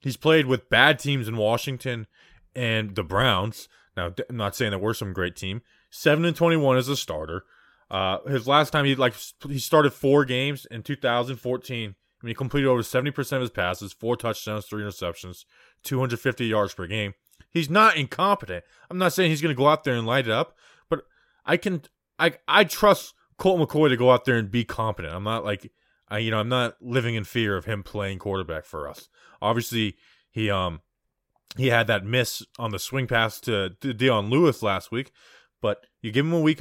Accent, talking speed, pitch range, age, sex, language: American, 205 wpm, 100-135 Hz, 20-39, male, English